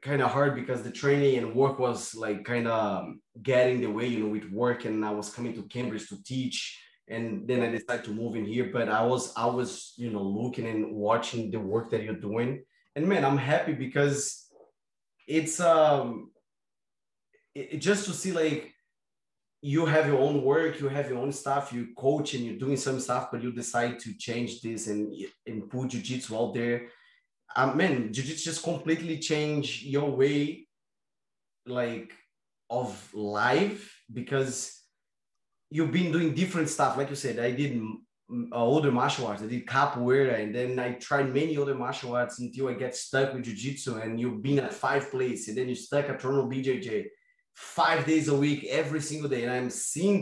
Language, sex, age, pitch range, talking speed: English, male, 20-39, 120-145 Hz, 190 wpm